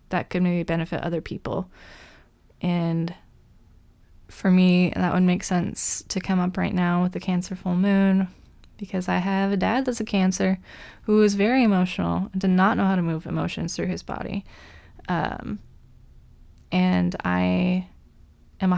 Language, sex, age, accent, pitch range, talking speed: English, female, 20-39, American, 175-195 Hz, 165 wpm